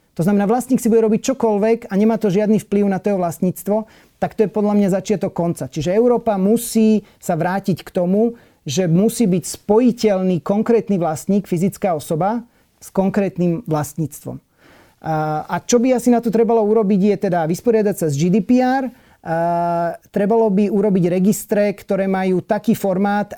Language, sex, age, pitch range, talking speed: Slovak, male, 40-59, 180-220 Hz, 160 wpm